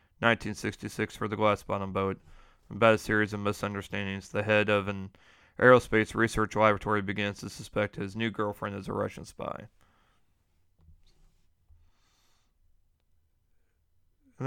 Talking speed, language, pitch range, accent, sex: 120 wpm, English, 85-110 Hz, American, male